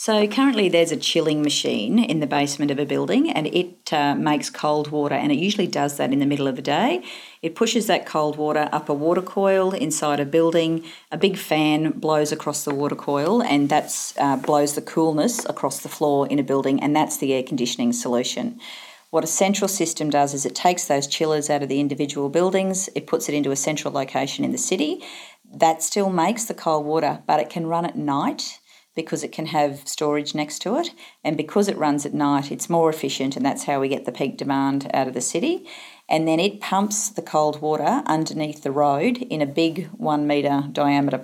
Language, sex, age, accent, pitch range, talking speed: English, female, 40-59, Australian, 145-170 Hz, 215 wpm